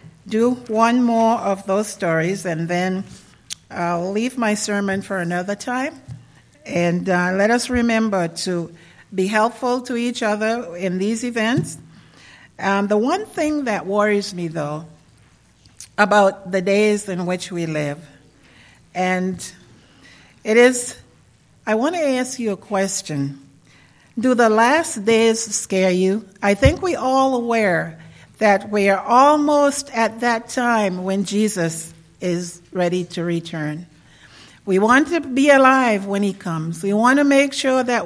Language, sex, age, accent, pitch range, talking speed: English, female, 60-79, American, 175-230 Hz, 145 wpm